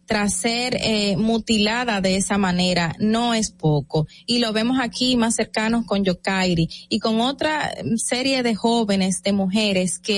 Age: 20-39